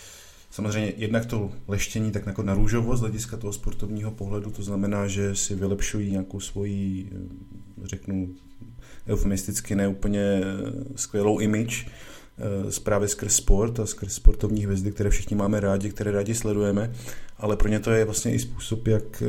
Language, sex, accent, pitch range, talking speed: Czech, male, native, 100-110 Hz, 145 wpm